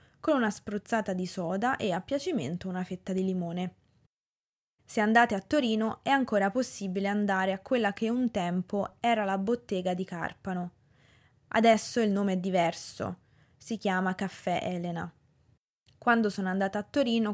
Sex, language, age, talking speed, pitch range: female, Italian, 20-39, 150 wpm, 180-225 Hz